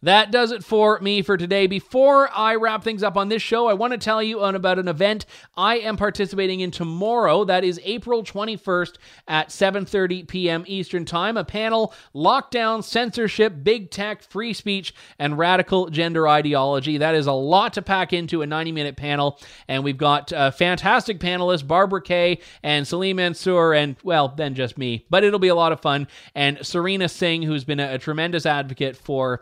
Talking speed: 190 wpm